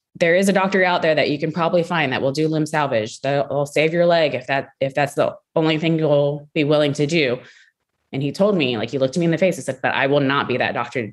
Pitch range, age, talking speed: 135-175 Hz, 20-39, 290 wpm